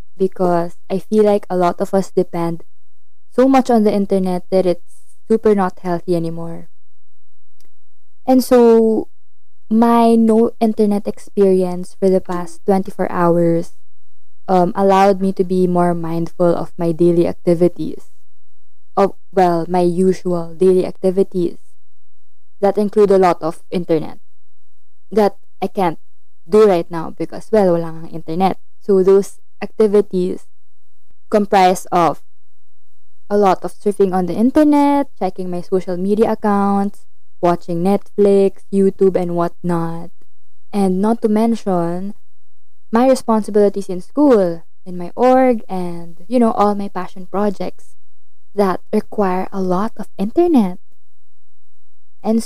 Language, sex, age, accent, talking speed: Filipino, female, 20-39, native, 125 wpm